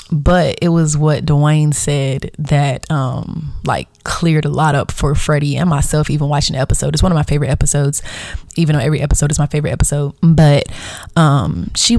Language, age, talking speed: English, 20-39, 190 wpm